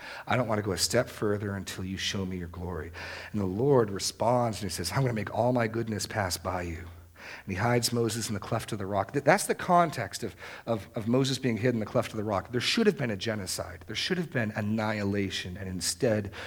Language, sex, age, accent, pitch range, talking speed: English, male, 40-59, American, 95-120 Hz, 250 wpm